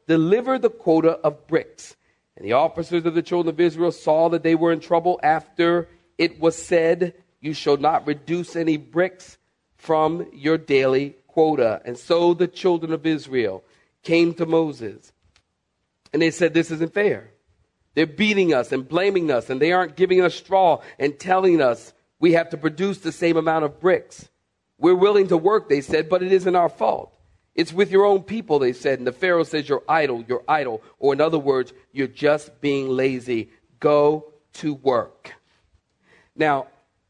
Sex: male